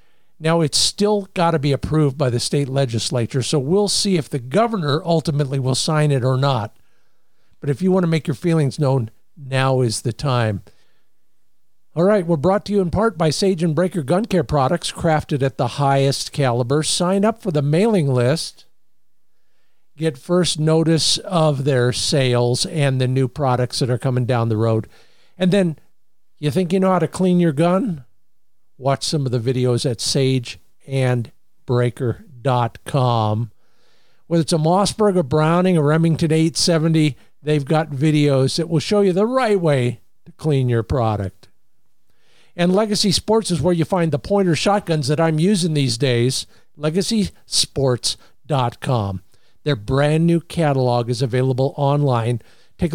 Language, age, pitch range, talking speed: English, 50-69, 125-170 Hz, 160 wpm